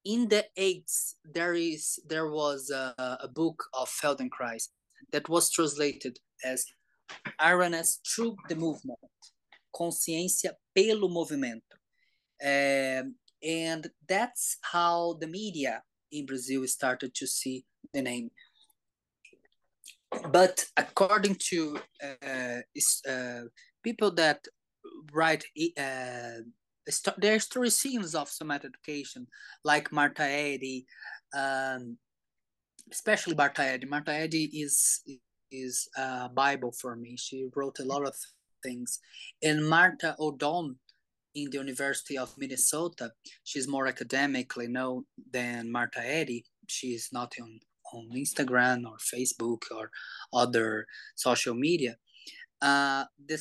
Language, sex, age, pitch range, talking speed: English, male, 20-39, 130-165 Hz, 110 wpm